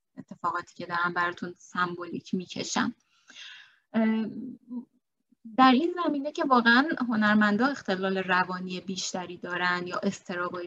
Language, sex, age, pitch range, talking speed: Persian, female, 20-39, 180-235 Hz, 100 wpm